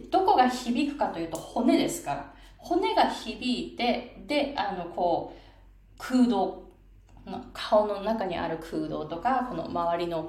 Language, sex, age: Japanese, female, 20-39